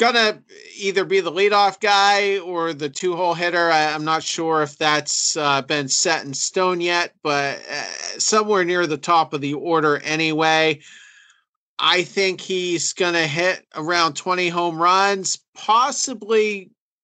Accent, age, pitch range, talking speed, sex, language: American, 40-59, 150-180 Hz, 155 wpm, male, English